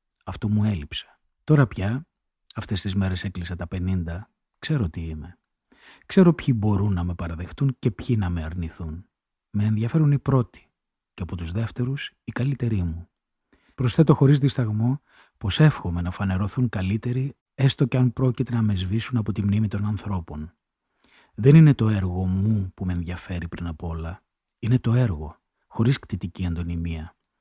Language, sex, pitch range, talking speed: Greek, male, 95-125 Hz, 160 wpm